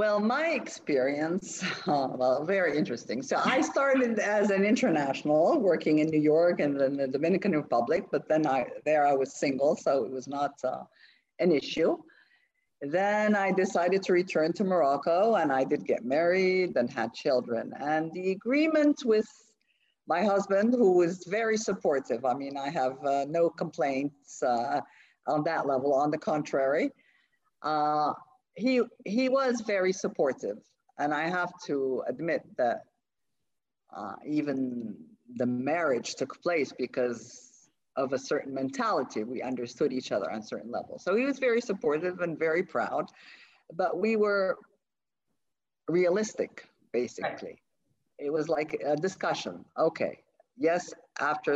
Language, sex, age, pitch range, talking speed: English, female, 50-69, 140-220 Hz, 150 wpm